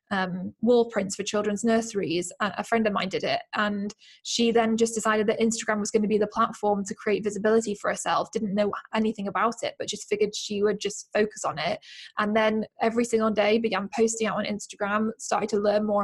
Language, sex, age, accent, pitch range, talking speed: English, female, 10-29, British, 200-225 Hz, 215 wpm